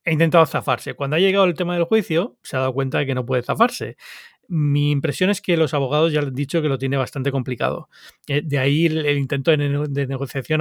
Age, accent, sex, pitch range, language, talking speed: 30-49, Spanish, male, 135-160 Hz, Spanish, 220 wpm